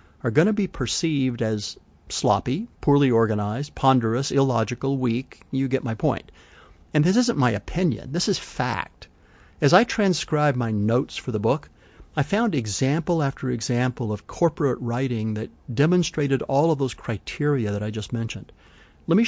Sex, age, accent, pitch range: male, 50-69, American, 110-150 Hz